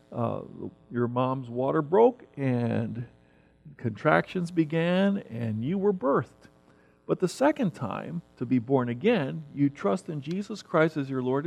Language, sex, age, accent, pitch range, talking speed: English, male, 50-69, American, 120-175 Hz, 145 wpm